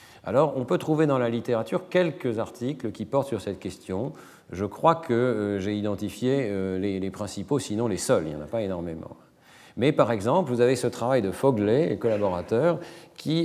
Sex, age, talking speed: male, 40-59, 200 wpm